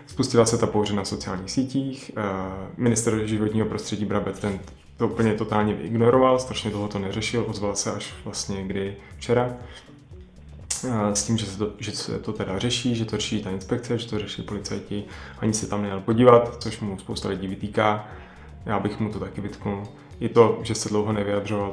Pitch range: 100-110 Hz